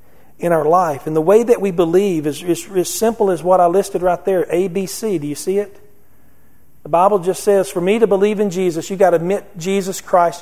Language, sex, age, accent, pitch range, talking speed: English, male, 40-59, American, 160-200 Hz, 225 wpm